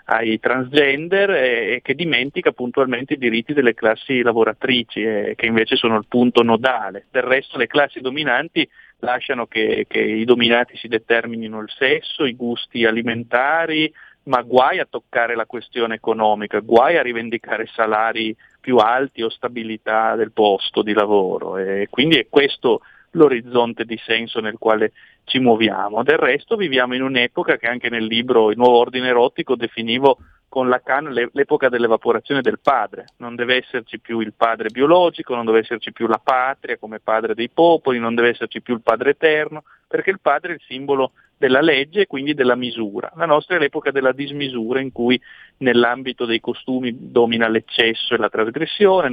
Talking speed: 165 wpm